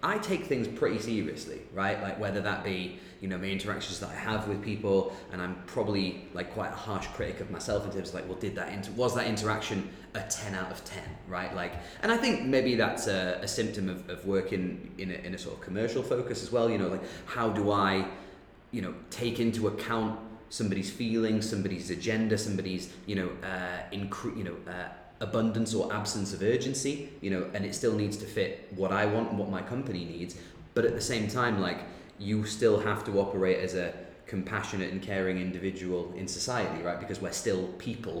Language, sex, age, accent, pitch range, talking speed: English, male, 30-49, British, 95-115 Hz, 210 wpm